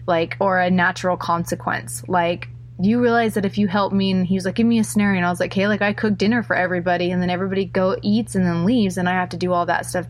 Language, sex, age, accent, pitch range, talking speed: English, female, 20-39, American, 170-195 Hz, 285 wpm